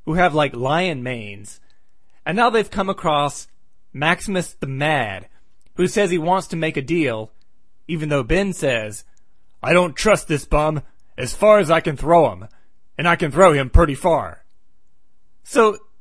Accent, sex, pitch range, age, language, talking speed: American, male, 140-185 Hz, 30-49, English, 170 wpm